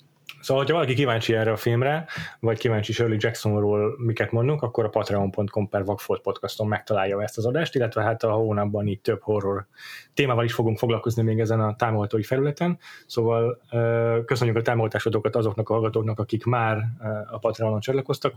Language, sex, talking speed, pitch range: Hungarian, male, 165 wpm, 105-125 Hz